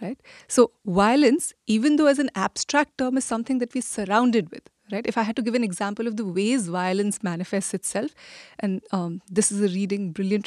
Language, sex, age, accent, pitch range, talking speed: English, female, 30-49, Indian, 195-255 Hz, 205 wpm